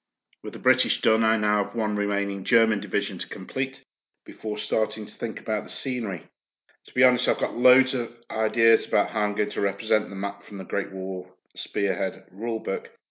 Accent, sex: British, male